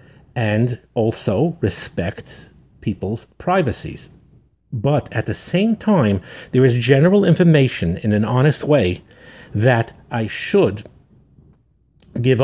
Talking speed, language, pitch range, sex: 105 wpm, English, 95-125 Hz, male